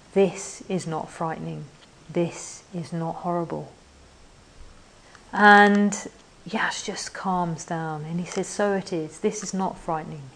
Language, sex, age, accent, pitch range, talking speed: English, female, 40-59, British, 170-205 Hz, 135 wpm